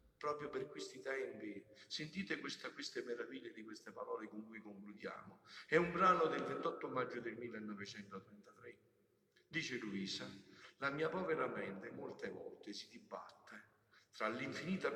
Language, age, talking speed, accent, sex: Italian, 50-69, 135 wpm, native, male